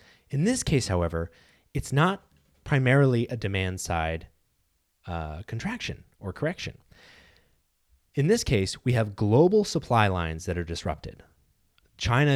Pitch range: 90-130 Hz